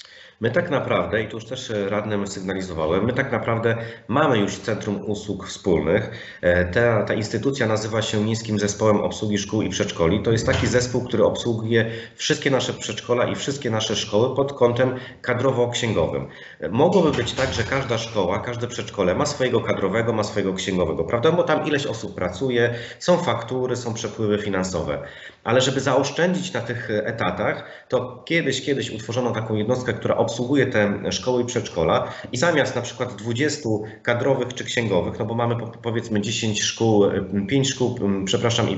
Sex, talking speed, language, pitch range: male, 160 wpm, Polish, 105-125 Hz